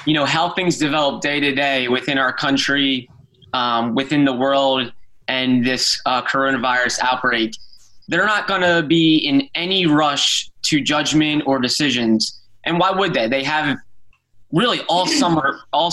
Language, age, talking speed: English, 20-39, 160 wpm